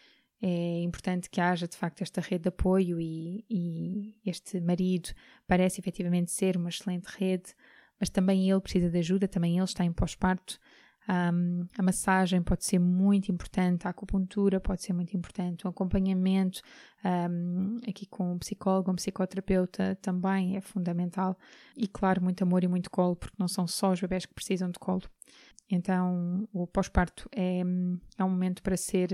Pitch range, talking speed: 180-195 Hz, 170 wpm